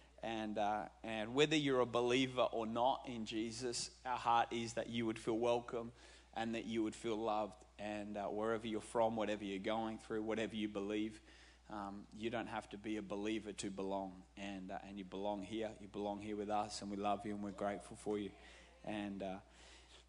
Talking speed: 205 wpm